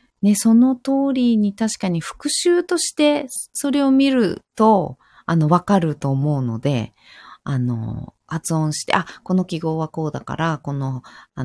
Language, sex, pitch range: Japanese, female, 120-180 Hz